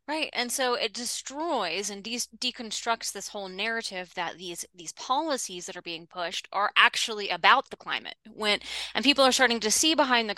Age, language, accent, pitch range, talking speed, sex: 20-39, English, American, 185-235 Hz, 190 wpm, female